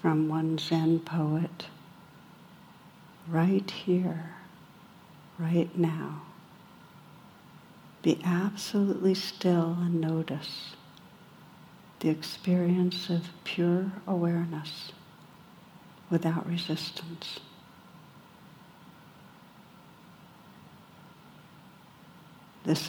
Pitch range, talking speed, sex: 165-190 Hz, 55 wpm, female